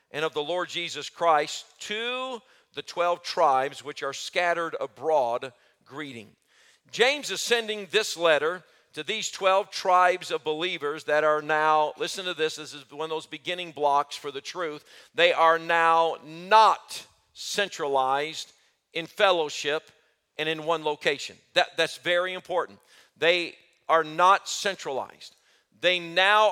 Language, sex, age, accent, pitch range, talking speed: English, male, 50-69, American, 155-195 Hz, 140 wpm